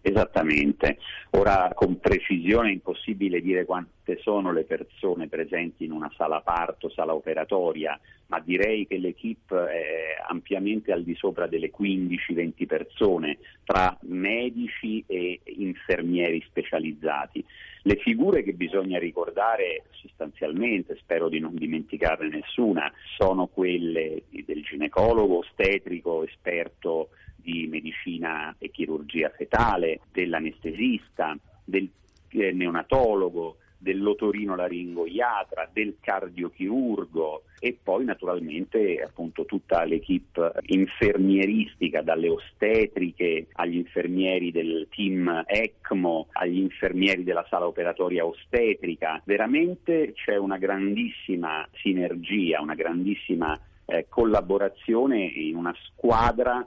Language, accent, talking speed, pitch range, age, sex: Italian, native, 100 wpm, 85-120 Hz, 40-59, male